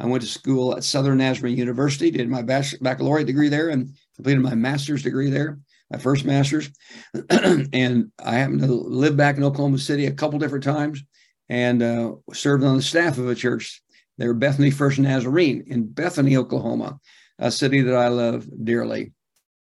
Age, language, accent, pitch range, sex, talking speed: 60-79, English, American, 130-155 Hz, male, 175 wpm